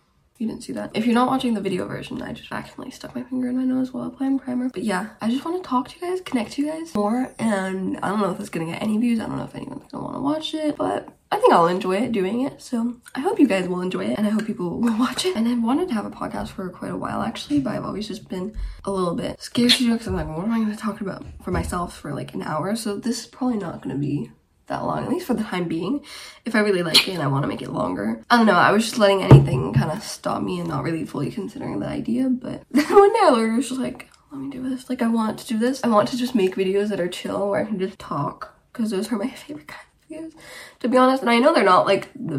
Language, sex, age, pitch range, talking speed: English, female, 10-29, 200-275 Hz, 305 wpm